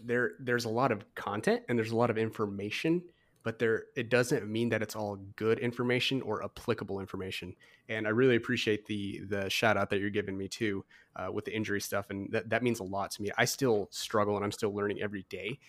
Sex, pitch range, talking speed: male, 100-120 Hz, 230 wpm